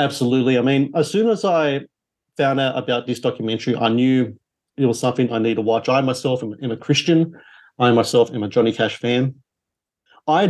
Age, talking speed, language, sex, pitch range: 40-59, 195 wpm, English, male, 115-140 Hz